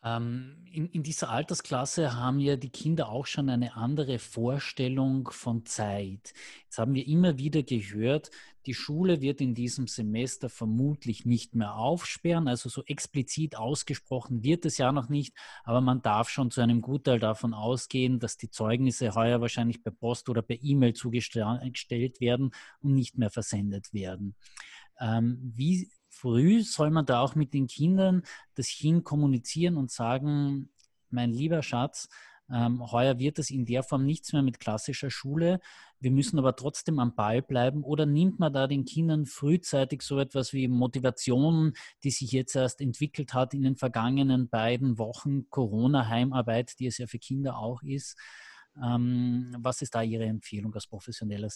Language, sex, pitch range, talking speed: German, male, 120-145 Hz, 165 wpm